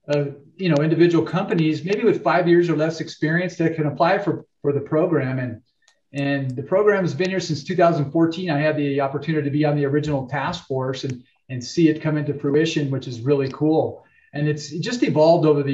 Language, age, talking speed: English, 40-59, 215 wpm